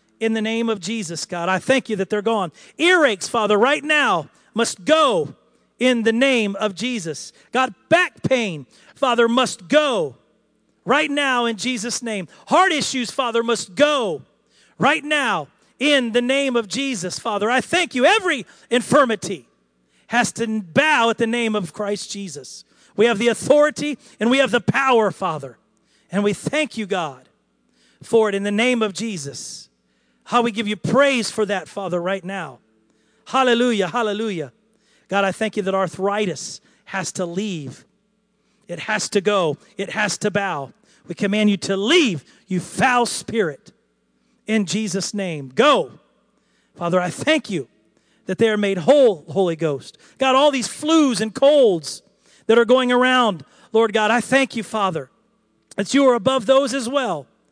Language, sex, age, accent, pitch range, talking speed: English, male, 40-59, American, 195-260 Hz, 165 wpm